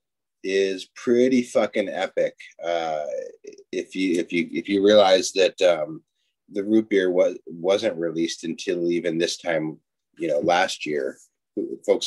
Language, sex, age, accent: English, male, 30-49, American